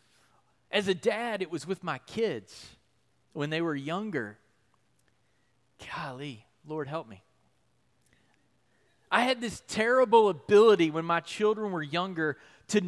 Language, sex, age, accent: English, male, 30-49, American